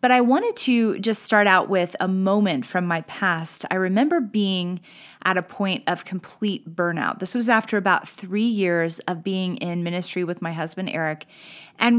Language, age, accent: English, 30-49, American